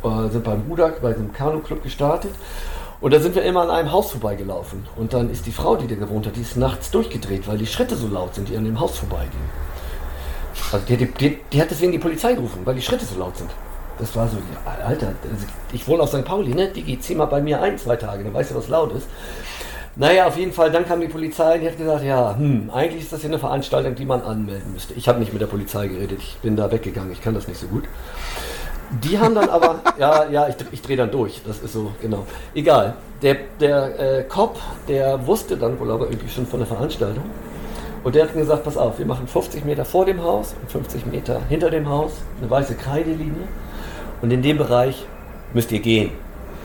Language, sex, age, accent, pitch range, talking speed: German, male, 50-69, German, 110-155 Hz, 235 wpm